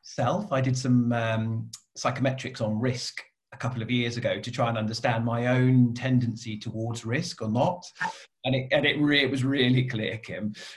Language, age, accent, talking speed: English, 30-49, British, 190 wpm